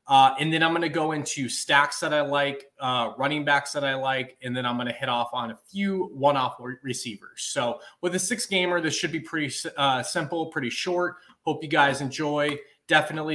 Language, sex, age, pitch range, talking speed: English, male, 20-39, 130-160 Hz, 210 wpm